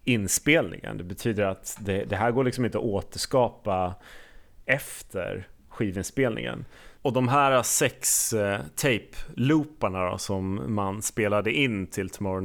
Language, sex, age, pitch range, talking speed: Swedish, male, 30-49, 95-115 Hz, 130 wpm